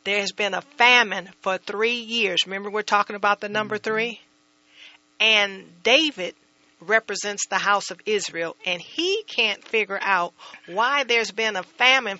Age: 50-69